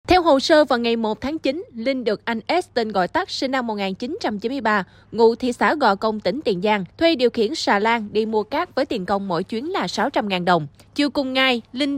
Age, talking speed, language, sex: 20-39, 230 wpm, Vietnamese, female